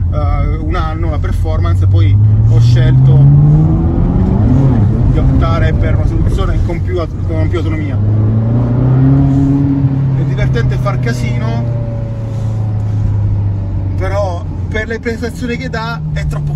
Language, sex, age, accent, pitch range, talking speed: Italian, male, 30-49, native, 100-120 Hz, 110 wpm